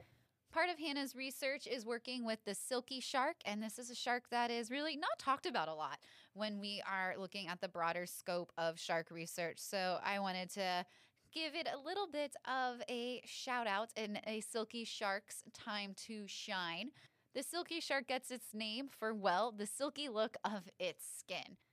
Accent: American